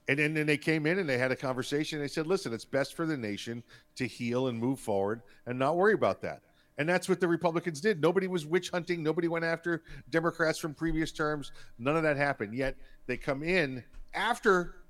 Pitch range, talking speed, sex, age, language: 125-165 Hz, 225 wpm, male, 50-69, English